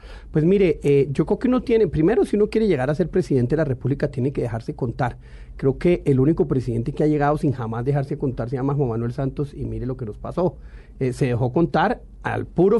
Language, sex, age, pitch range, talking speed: Spanish, male, 40-59, 130-170 Hz, 245 wpm